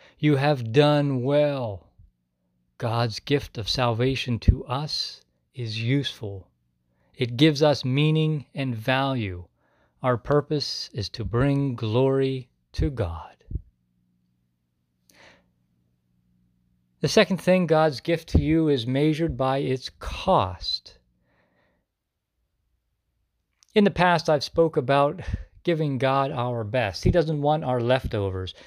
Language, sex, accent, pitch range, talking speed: English, male, American, 95-155 Hz, 110 wpm